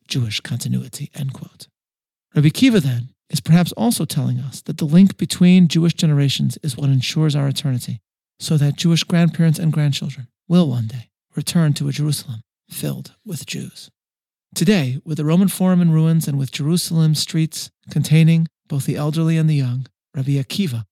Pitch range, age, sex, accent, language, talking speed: 135-170 Hz, 40-59, male, American, English, 170 wpm